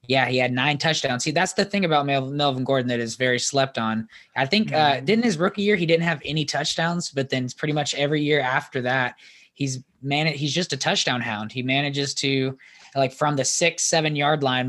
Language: English